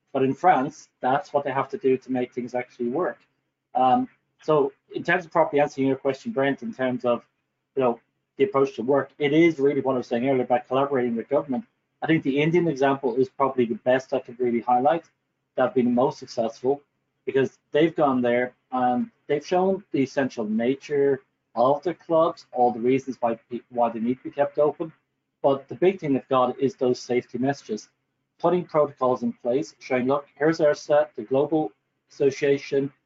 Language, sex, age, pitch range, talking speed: English, male, 30-49, 125-145 Hz, 200 wpm